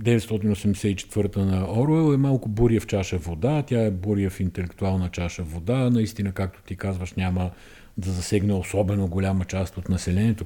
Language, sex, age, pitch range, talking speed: Bulgarian, male, 50-69, 95-115 Hz, 160 wpm